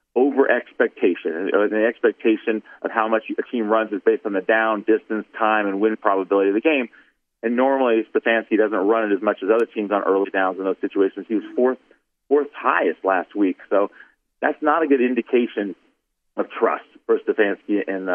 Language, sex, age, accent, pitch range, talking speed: English, male, 40-59, American, 105-140 Hz, 190 wpm